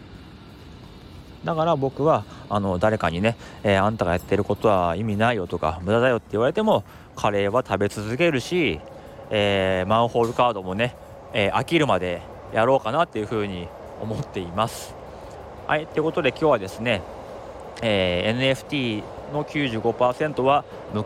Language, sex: Japanese, male